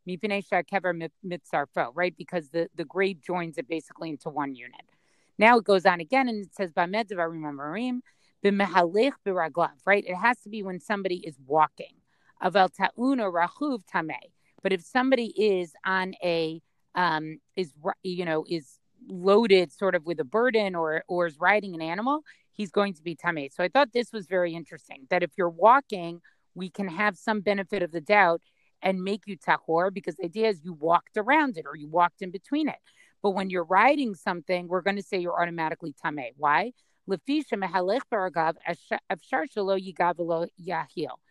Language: English